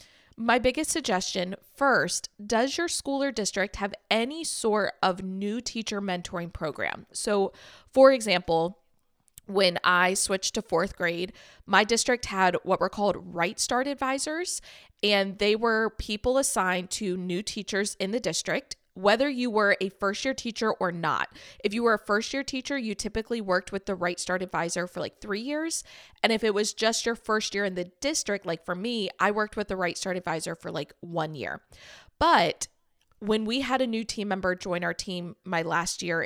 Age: 20-39